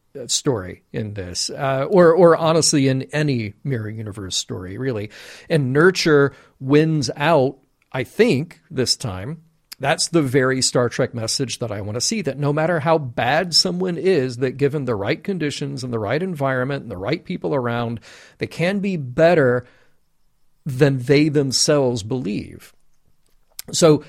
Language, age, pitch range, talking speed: English, 40-59, 130-160 Hz, 155 wpm